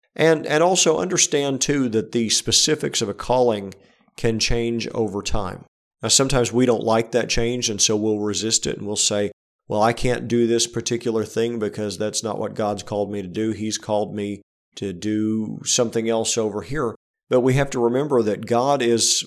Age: 40-59